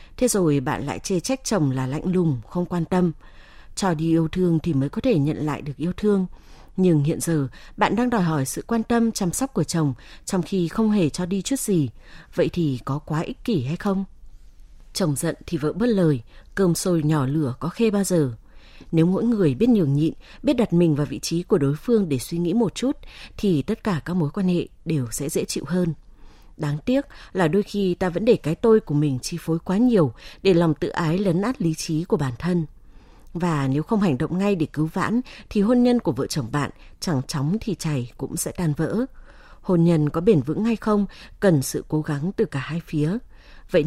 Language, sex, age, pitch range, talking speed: Vietnamese, female, 20-39, 150-200 Hz, 230 wpm